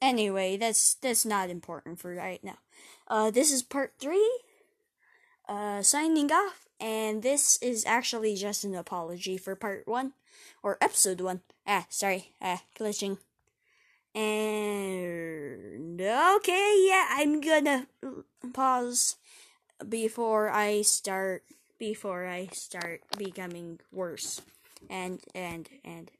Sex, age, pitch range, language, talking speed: female, 20-39, 190-295 Hz, English, 115 wpm